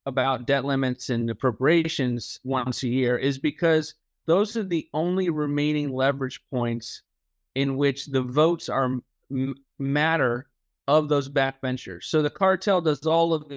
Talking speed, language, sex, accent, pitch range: 145 wpm, English, male, American, 125-150 Hz